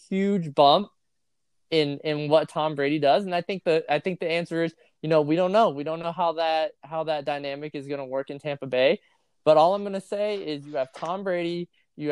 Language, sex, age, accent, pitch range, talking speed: English, male, 20-39, American, 140-165 Hz, 245 wpm